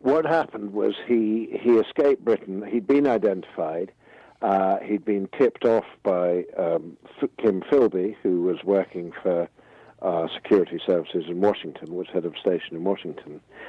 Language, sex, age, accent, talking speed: English, male, 50-69, British, 155 wpm